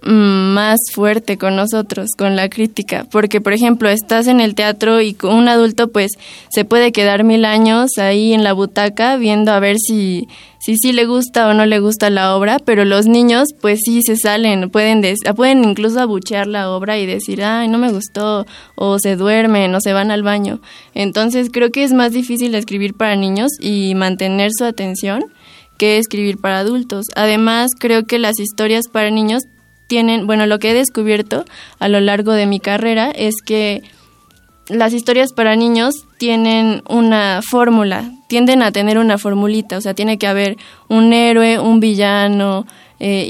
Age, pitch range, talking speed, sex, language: 20-39, 205-230 Hz, 175 wpm, female, Spanish